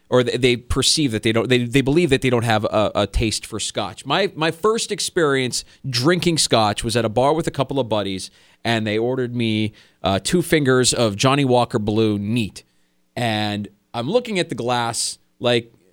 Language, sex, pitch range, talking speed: English, male, 105-140 Hz, 195 wpm